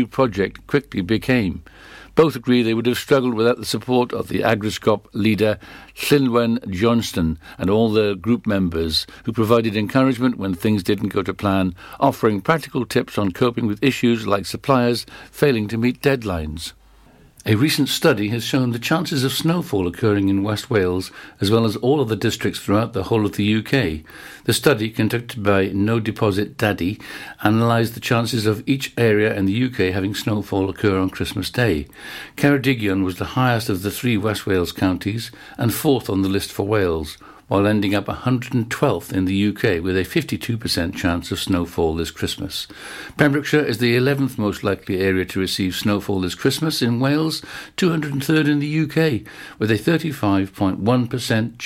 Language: English